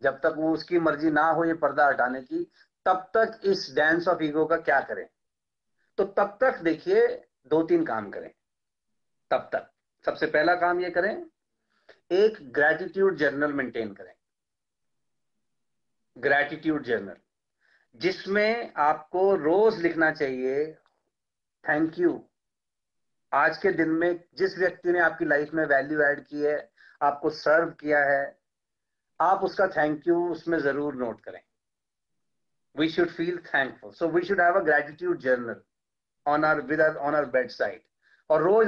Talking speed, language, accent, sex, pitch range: 130 wpm, Hindi, native, male, 150-200 Hz